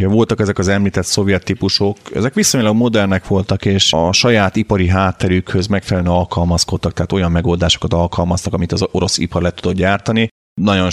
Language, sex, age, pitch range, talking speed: Hungarian, male, 30-49, 85-100 Hz, 160 wpm